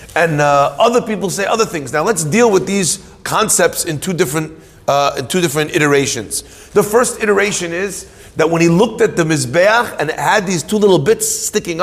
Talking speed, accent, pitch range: 205 wpm, American, 140-190 Hz